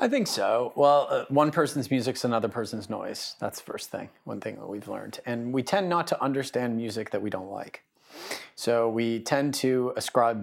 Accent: American